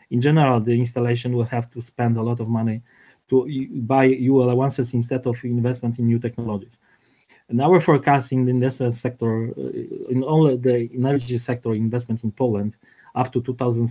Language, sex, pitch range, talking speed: English, male, 115-130 Hz, 175 wpm